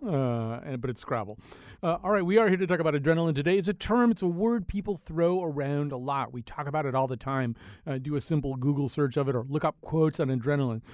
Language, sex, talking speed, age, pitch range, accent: English, male, 265 wpm, 40-59, 115-150 Hz, American